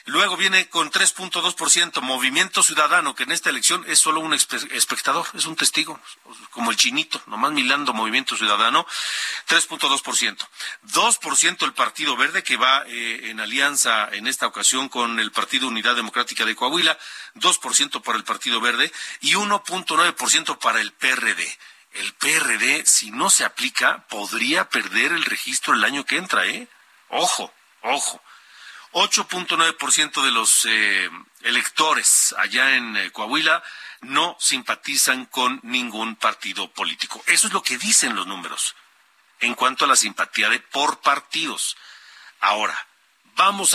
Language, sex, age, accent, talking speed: Spanish, male, 40-59, Mexican, 145 wpm